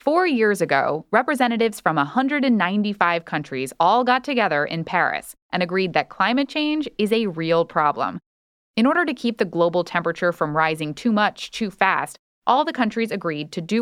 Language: English